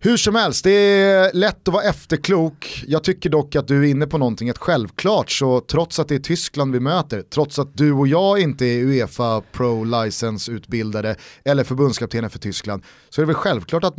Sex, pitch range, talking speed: male, 125-160 Hz, 200 wpm